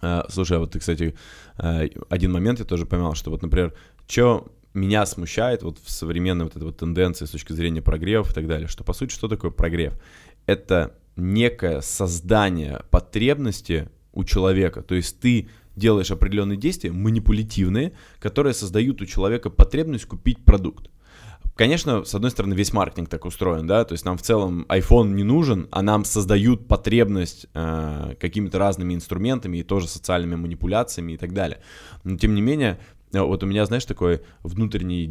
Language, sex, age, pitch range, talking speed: Russian, male, 20-39, 85-110 Hz, 165 wpm